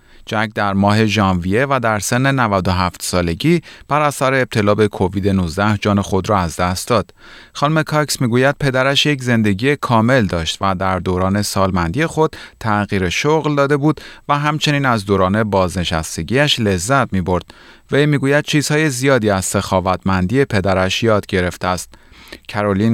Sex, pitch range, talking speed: male, 95-140 Hz, 145 wpm